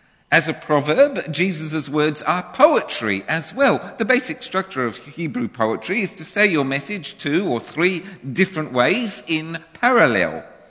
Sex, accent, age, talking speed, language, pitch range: male, British, 50-69, 150 wpm, English, 135-220 Hz